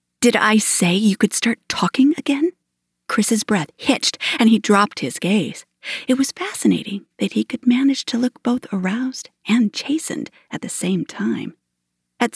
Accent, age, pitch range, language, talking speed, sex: American, 40-59, 170-235 Hz, English, 165 wpm, female